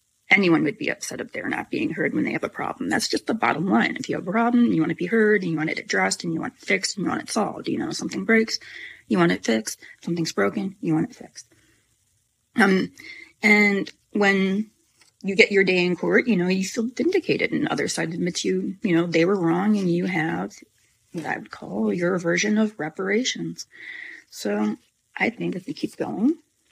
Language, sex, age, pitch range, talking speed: English, female, 30-49, 165-225 Hz, 230 wpm